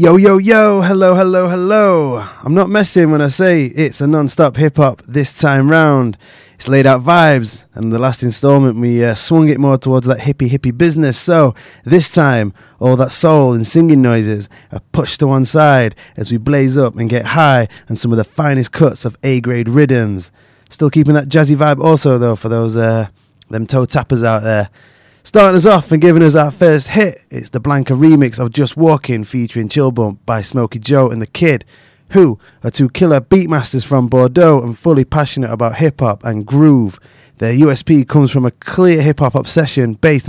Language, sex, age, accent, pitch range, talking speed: English, male, 20-39, British, 120-155 Hz, 190 wpm